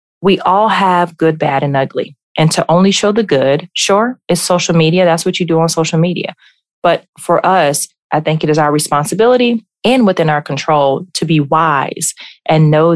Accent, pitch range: American, 150-180 Hz